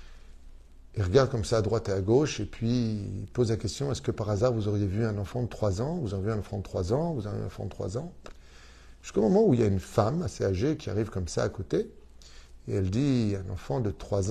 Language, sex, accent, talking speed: French, male, French, 305 wpm